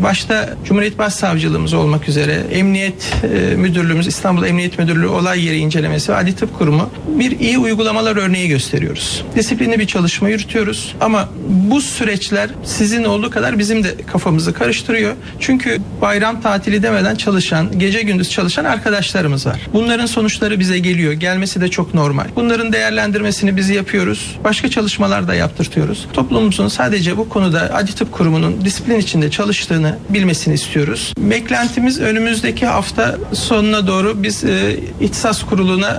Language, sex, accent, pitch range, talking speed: Turkish, male, native, 180-215 Hz, 140 wpm